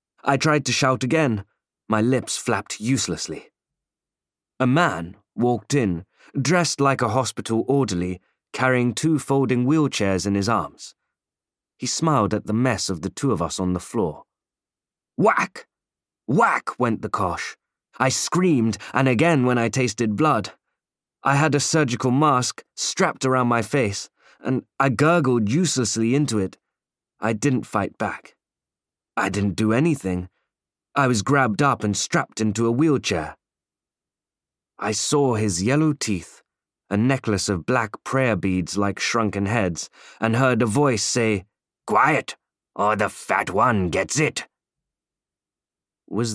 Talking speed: 140 wpm